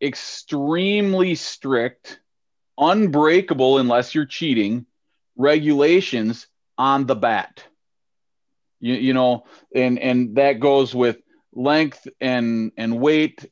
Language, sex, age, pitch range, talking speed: English, male, 30-49, 120-145 Hz, 100 wpm